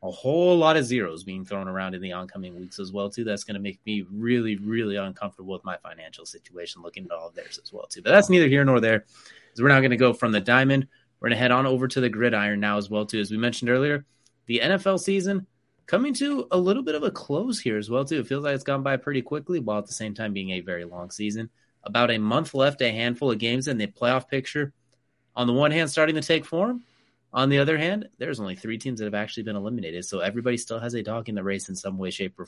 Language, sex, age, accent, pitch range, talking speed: English, male, 30-49, American, 105-140 Hz, 270 wpm